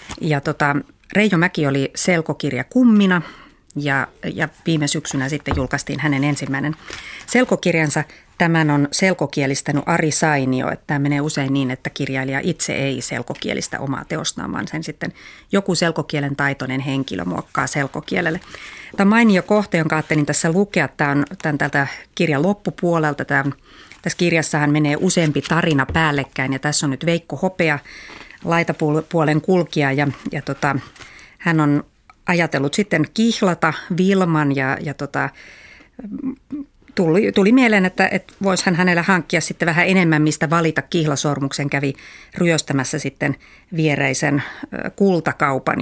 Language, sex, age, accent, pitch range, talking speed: Finnish, female, 30-49, native, 140-175 Hz, 130 wpm